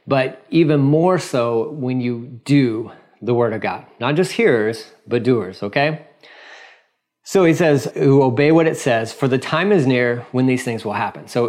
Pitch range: 115-135 Hz